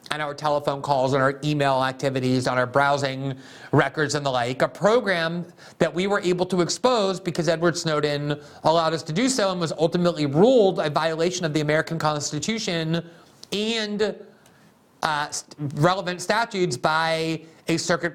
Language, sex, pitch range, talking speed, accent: English, male, 135-175 Hz, 160 wpm, American